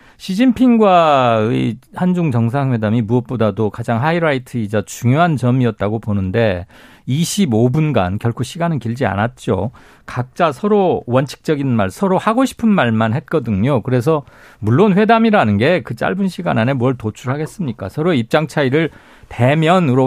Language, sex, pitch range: Korean, male, 120-180 Hz